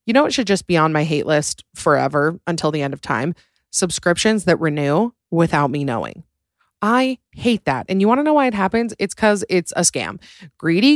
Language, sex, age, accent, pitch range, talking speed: English, female, 30-49, American, 150-190 Hz, 215 wpm